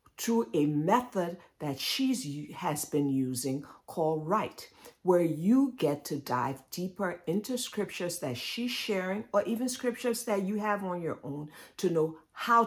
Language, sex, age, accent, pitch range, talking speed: English, female, 50-69, American, 135-200 Hz, 160 wpm